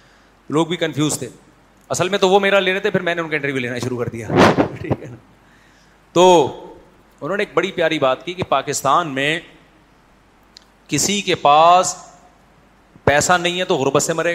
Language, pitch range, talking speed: Urdu, 150-190 Hz, 190 wpm